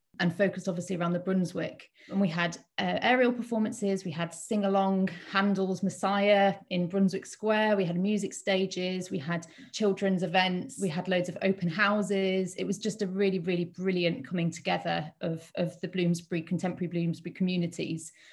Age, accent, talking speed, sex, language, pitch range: 30-49, British, 165 wpm, female, English, 175-205 Hz